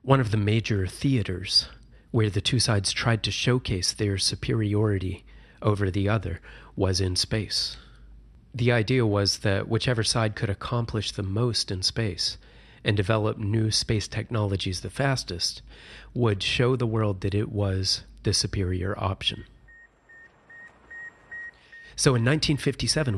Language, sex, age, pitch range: English, male, 30-49, 100-120 Hz